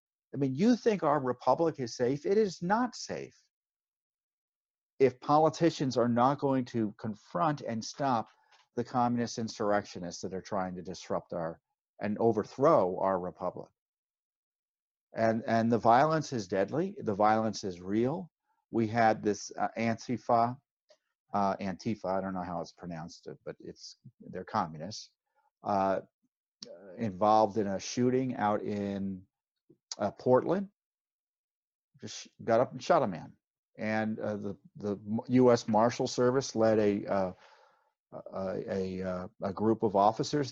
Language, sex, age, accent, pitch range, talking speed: English, male, 50-69, American, 105-140 Hz, 140 wpm